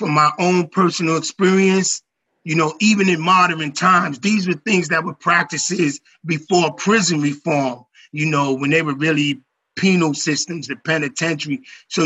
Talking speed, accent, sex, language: 155 wpm, American, male, English